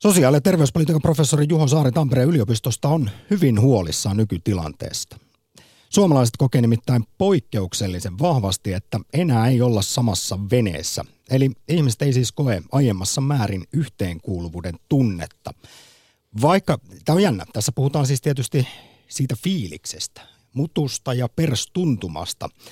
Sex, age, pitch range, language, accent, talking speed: male, 50-69, 100-135 Hz, Finnish, native, 120 wpm